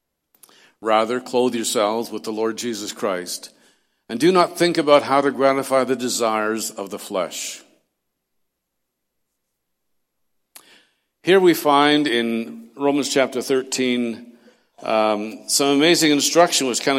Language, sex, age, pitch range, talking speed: English, male, 60-79, 120-155 Hz, 120 wpm